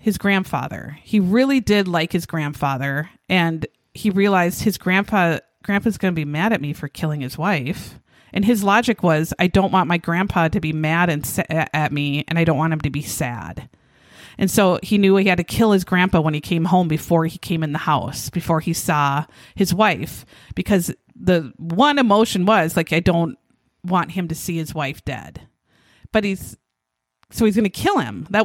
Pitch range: 155-205 Hz